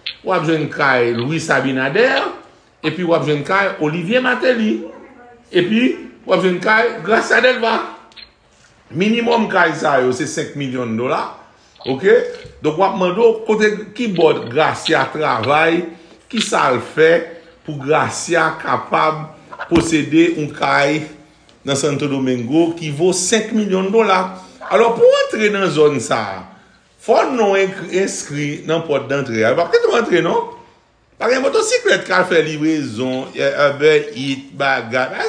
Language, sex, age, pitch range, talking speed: French, male, 60-79, 150-195 Hz, 130 wpm